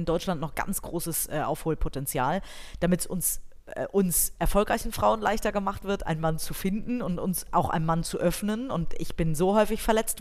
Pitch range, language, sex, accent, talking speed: 165-205 Hz, German, female, German, 195 wpm